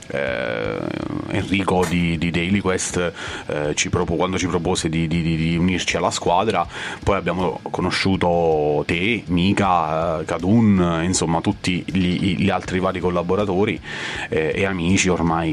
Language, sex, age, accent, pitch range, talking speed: Italian, male, 30-49, native, 85-105 Hz, 125 wpm